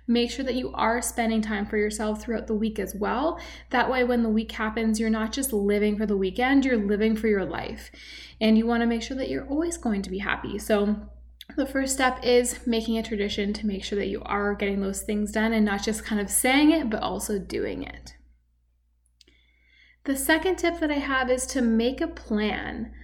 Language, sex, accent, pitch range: English, female, American, 210-255 Hz